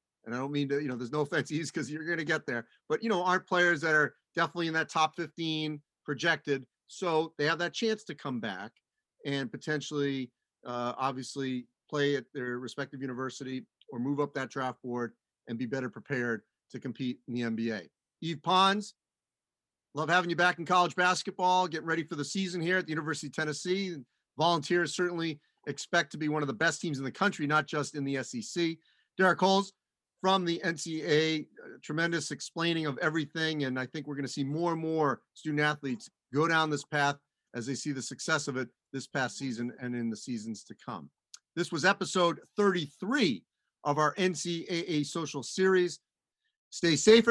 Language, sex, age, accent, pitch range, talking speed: English, male, 40-59, American, 135-170 Hz, 195 wpm